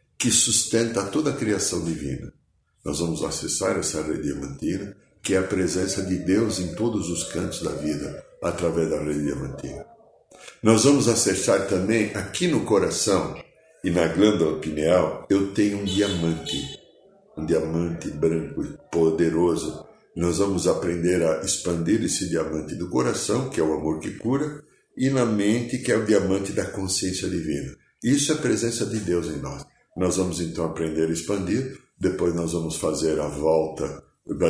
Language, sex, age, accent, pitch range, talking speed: Portuguese, male, 60-79, Brazilian, 80-110 Hz, 165 wpm